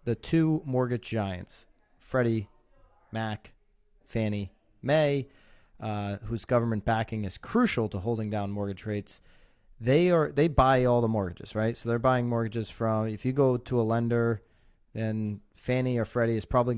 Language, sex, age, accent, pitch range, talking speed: English, male, 30-49, American, 110-130 Hz, 155 wpm